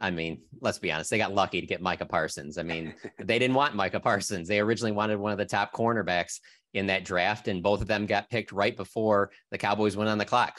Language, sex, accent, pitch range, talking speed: English, male, American, 90-110 Hz, 250 wpm